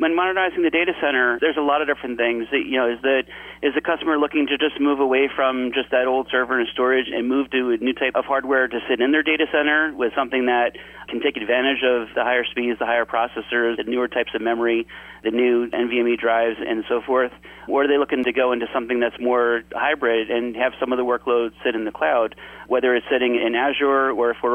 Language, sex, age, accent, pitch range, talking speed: English, male, 30-49, American, 120-130 Hz, 240 wpm